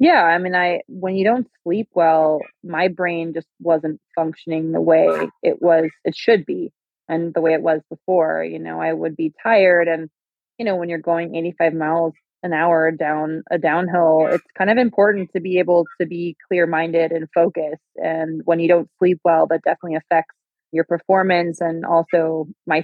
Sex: female